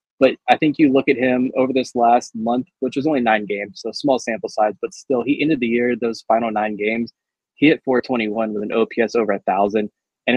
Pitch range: 115-135 Hz